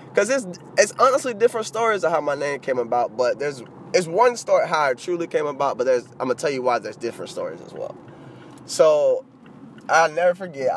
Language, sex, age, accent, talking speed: English, male, 20-39, American, 210 wpm